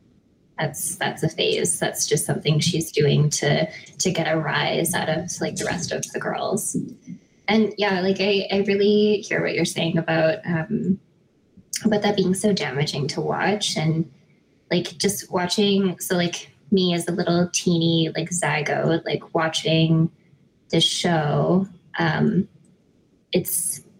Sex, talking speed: female, 150 wpm